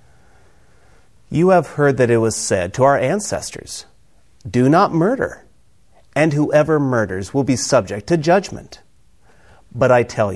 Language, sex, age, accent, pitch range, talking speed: English, male, 40-59, American, 105-165 Hz, 140 wpm